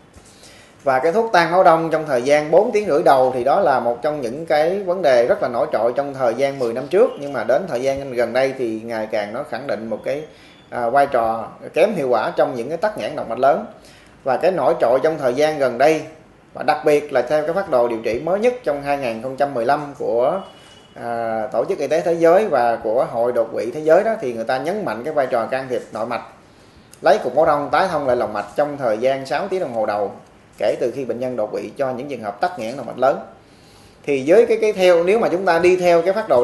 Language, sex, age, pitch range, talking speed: Vietnamese, male, 20-39, 125-170 Hz, 260 wpm